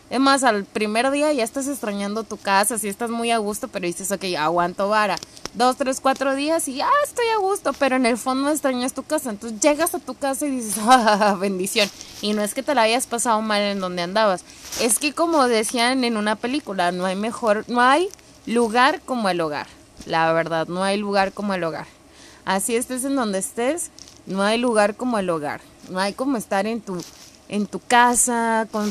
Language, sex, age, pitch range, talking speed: Spanish, female, 20-39, 195-260 Hz, 215 wpm